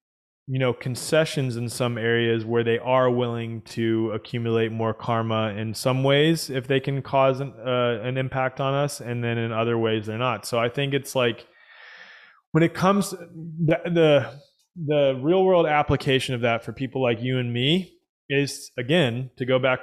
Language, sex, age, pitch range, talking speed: English, male, 20-39, 115-140 Hz, 190 wpm